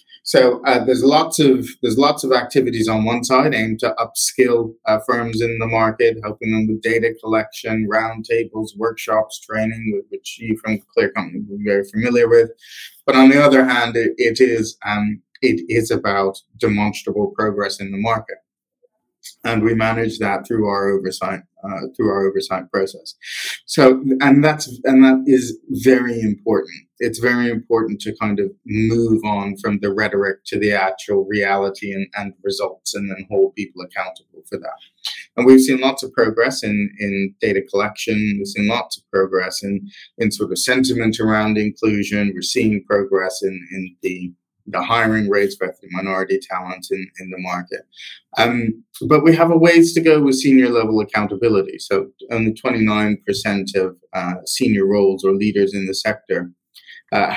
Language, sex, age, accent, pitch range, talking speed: English, male, 20-39, American, 100-125 Hz, 170 wpm